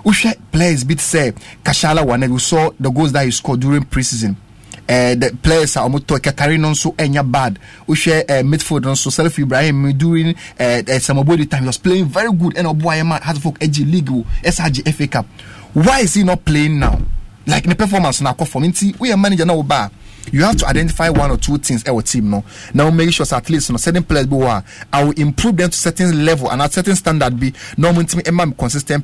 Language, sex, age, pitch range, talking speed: English, male, 30-49, 130-175 Hz, 215 wpm